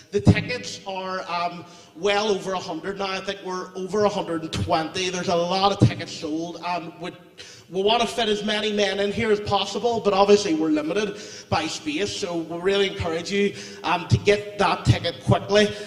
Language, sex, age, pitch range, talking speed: English, male, 30-49, 175-205 Hz, 180 wpm